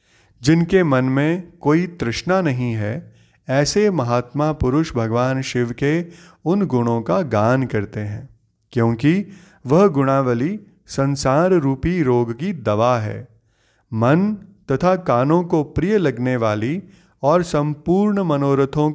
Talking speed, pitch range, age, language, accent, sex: 120 wpm, 115-165 Hz, 30-49, Hindi, native, male